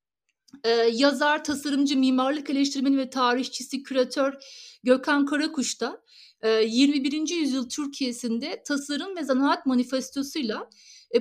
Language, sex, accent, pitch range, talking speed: Turkish, female, native, 250-295 Hz, 100 wpm